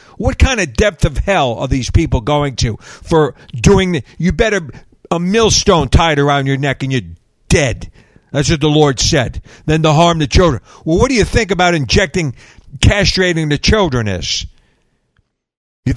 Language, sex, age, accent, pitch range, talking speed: English, male, 50-69, American, 140-200 Hz, 175 wpm